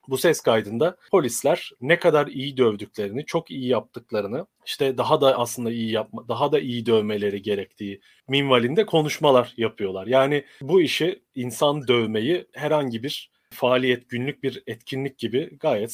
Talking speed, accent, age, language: 145 wpm, native, 40-59, Turkish